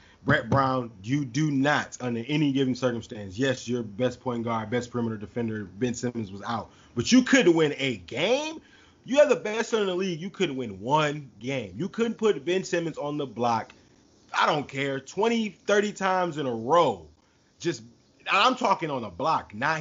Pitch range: 115-140 Hz